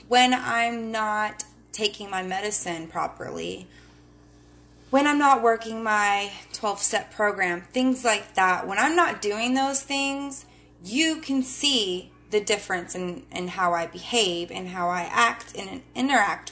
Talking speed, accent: 140 wpm, American